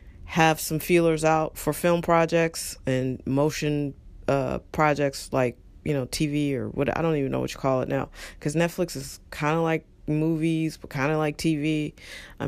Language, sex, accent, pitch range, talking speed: English, female, American, 135-155 Hz, 190 wpm